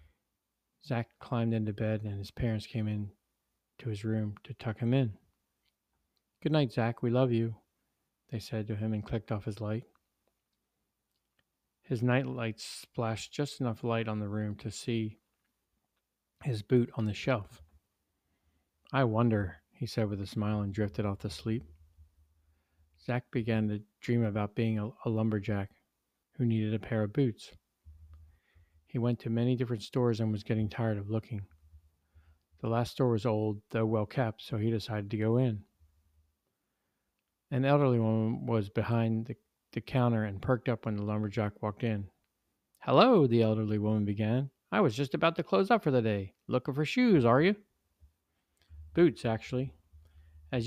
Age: 40-59